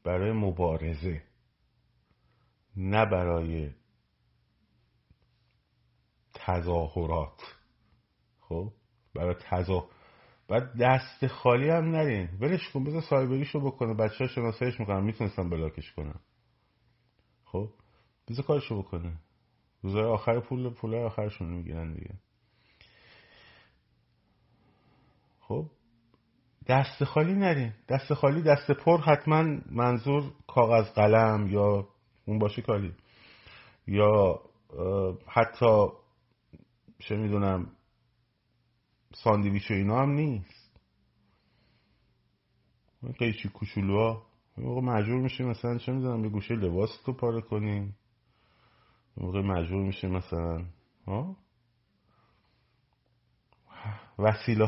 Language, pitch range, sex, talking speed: Persian, 100-125 Hz, male, 95 wpm